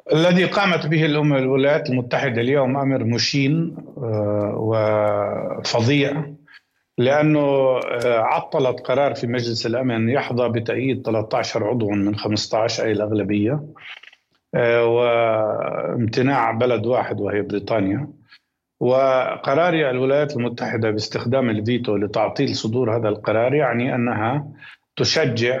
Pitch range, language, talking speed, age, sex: 115-140 Hz, Arabic, 95 wpm, 50-69, male